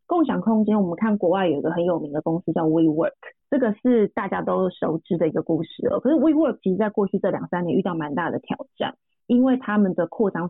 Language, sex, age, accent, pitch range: Chinese, female, 20-39, native, 175-230 Hz